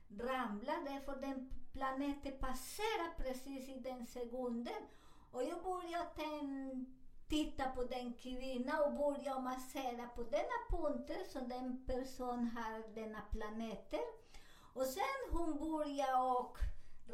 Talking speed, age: 110 wpm, 50-69